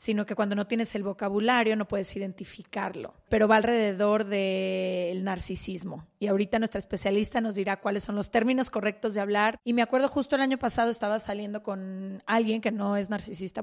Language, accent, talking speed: Spanish, Mexican, 195 wpm